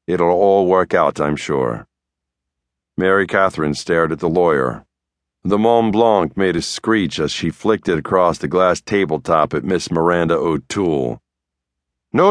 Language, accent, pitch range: English, American, 80-120 Hz